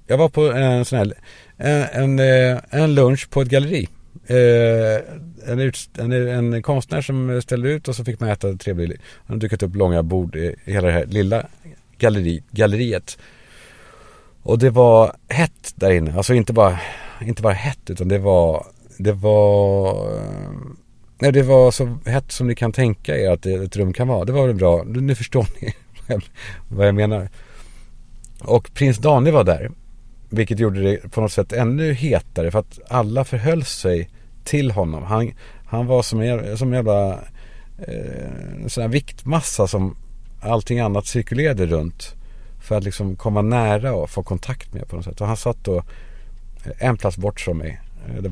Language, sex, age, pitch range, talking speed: Swedish, male, 50-69, 100-125 Hz, 175 wpm